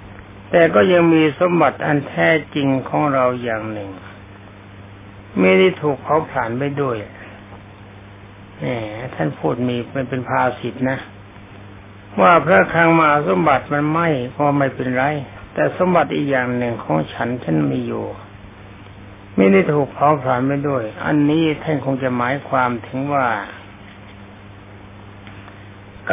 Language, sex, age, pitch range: Thai, male, 60-79, 100-145 Hz